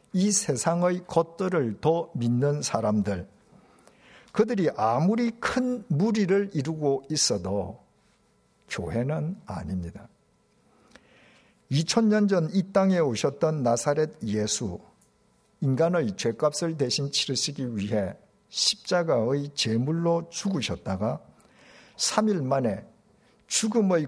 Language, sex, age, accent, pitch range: Korean, male, 50-69, native, 120-190 Hz